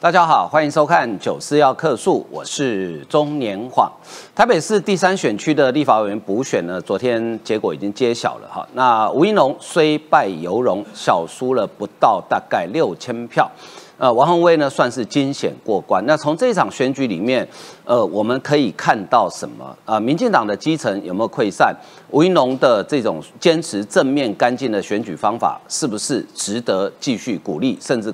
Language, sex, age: Chinese, male, 50-69